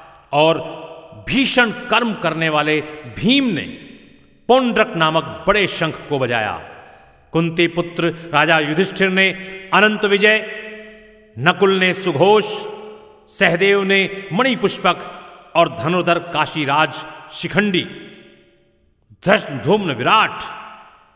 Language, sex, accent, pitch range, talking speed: Hindi, male, native, 150-190 Hz, 95 wpm